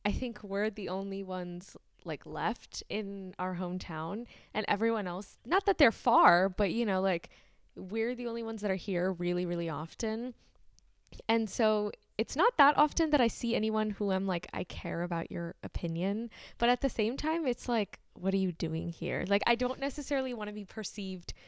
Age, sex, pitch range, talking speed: 10-29, female, 180-230 Hz, 195 wpm